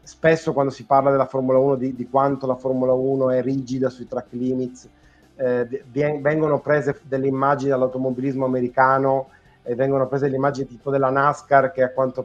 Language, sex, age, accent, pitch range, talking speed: Italian, male, 30-49, native, 125-145 Hz, 180 wpm